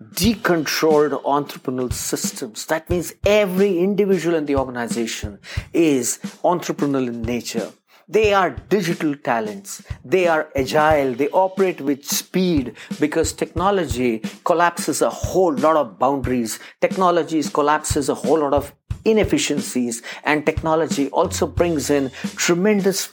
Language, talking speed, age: English, 120 wpm, 50-69